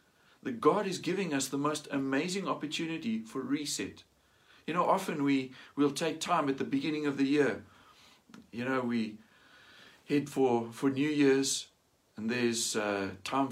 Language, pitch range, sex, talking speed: English, 120-155 Hz, male, 160 wpm